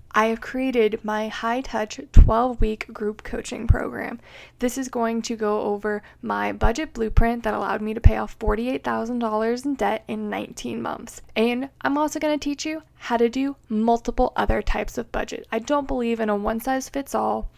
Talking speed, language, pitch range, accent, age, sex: 175 wpm, English, 215-260 Hz, American, 20-39, female